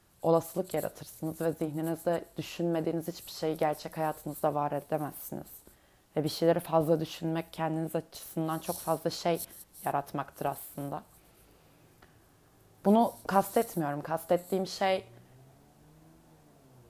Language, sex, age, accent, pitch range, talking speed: Turkish, female, 30-49, native, 150-170 Hz, 95 wpm